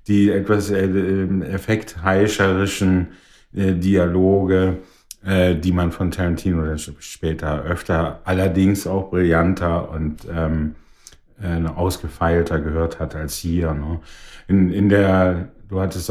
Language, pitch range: German, 80-95 Hz